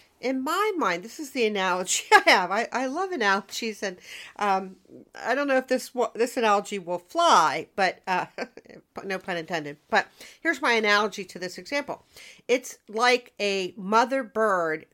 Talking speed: 165 wpm